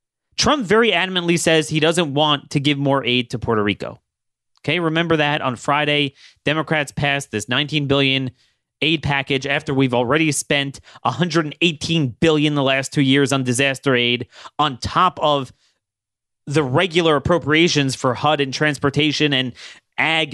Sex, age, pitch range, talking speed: male, 30-49, 120-155 Hz, 150 wpm